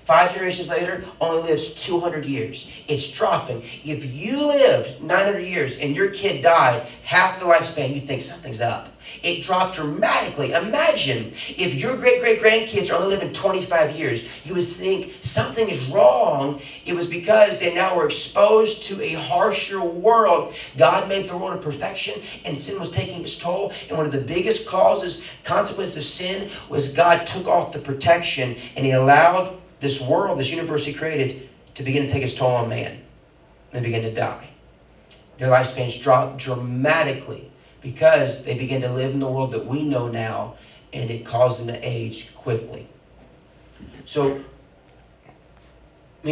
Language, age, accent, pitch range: English, 30-49, American, 130-180 Hz